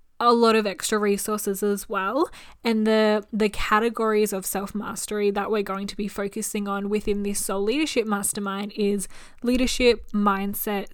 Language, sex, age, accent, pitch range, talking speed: English, female, 10-29, Australian, 200-220 Hz, 155 wpm